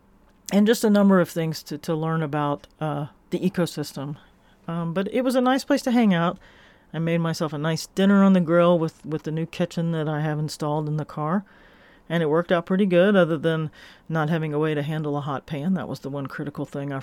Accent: American